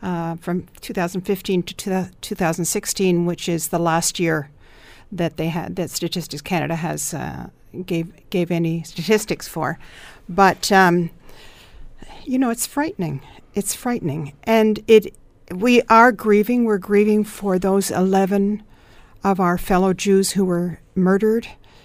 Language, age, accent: English, 50-69, American